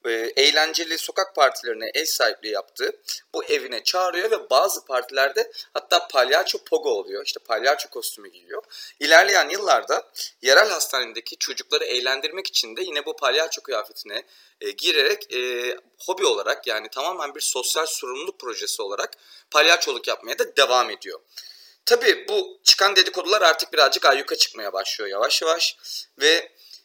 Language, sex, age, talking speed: Turkish, male, 30-49, 140 wpm